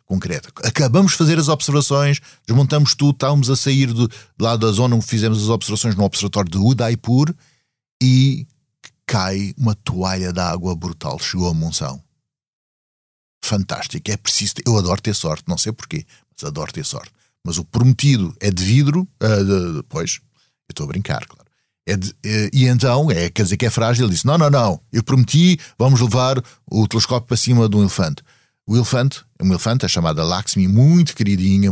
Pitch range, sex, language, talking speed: 100-125 Hz, male, Portuguese, 190 wpm